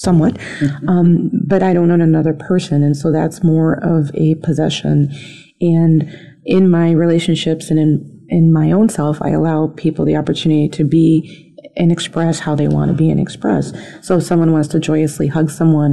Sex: female